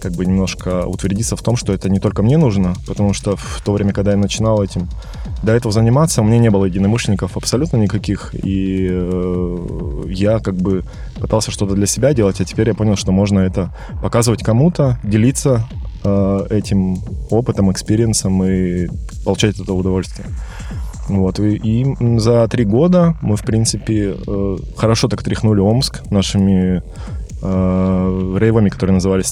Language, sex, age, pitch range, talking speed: Russian, male, 20-39, 95-110 Hz, 160 wpm